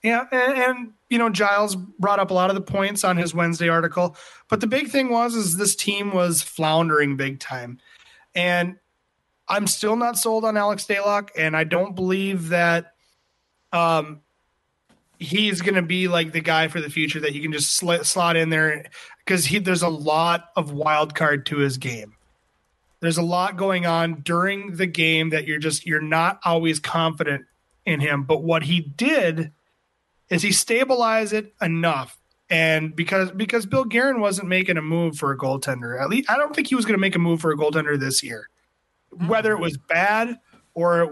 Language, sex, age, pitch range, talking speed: English, male, 30-49, 160-205 Hz, 195 wpm